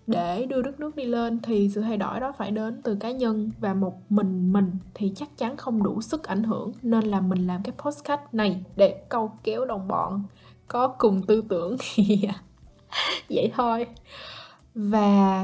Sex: female